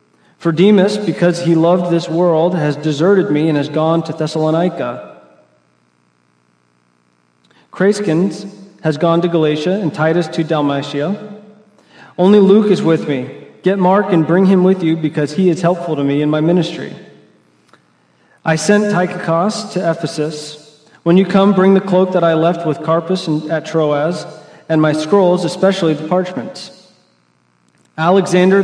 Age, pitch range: 40-59, 155-190 Hz